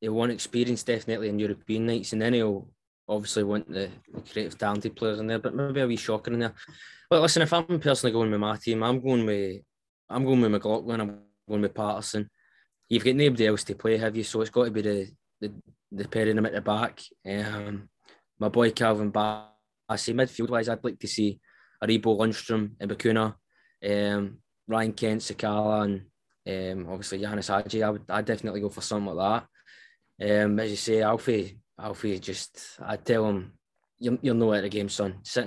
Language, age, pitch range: English, 20-39, 105-120 Hz